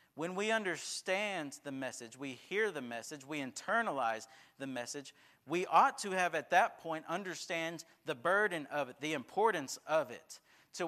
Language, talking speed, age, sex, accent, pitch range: English, 165 wpm, 40-59, male, American, 130-185 Hz